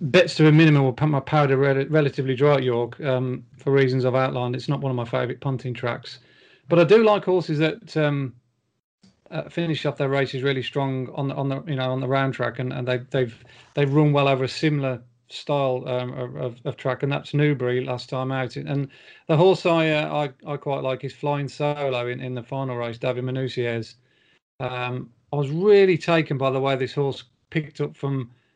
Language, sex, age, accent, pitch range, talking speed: English, male, 40-59, British, 130-150 Hz, 210 wpm